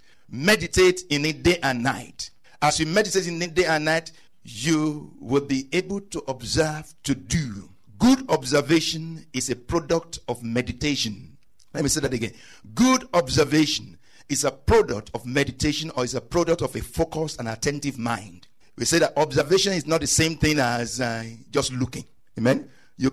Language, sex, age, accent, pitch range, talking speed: English, male, 50-69, Nigerian, 130-175 Hz, 170 wpm